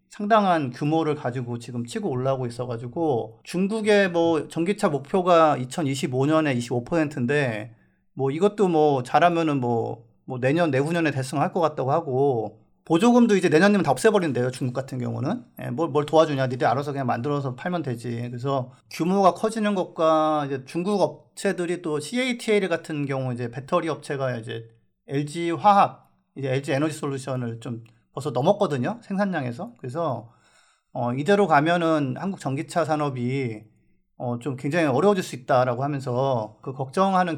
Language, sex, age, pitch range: Korean, male, 40-59, 125-170 Hz